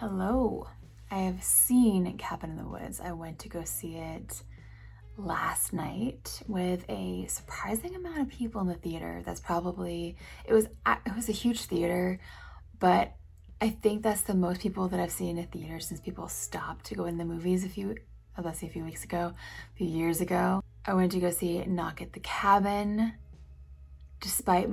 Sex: female